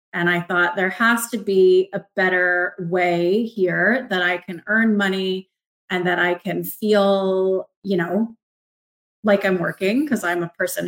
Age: 30-49